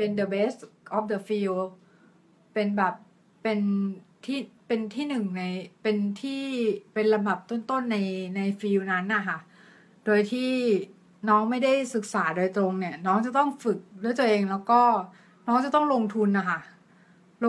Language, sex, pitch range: Thai, female, 190-235 Hz